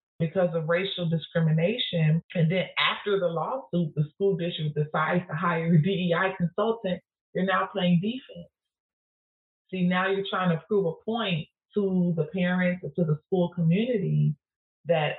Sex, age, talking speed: female, 30-49, 155 wpm